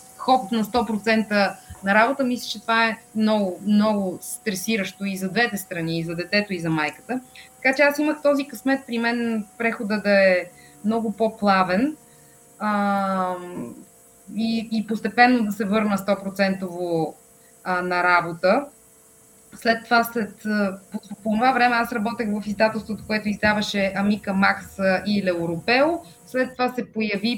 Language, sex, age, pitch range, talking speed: Bulgarian, female, 20-39, 190-235 Hz, 145 wpm